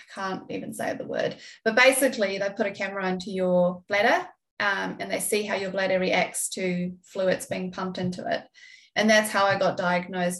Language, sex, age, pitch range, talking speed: English, female, 20-39, 185-220 Hz, 195 wpm